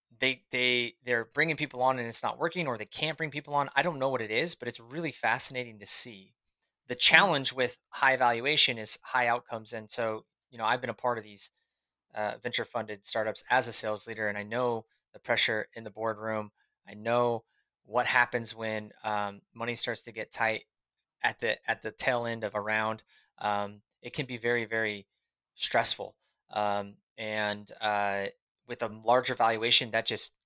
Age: 20-39